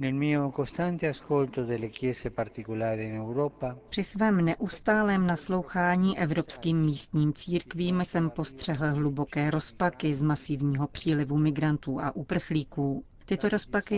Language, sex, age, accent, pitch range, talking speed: Czech, female, 40-59, native, 150-175 Hz, 80 wpm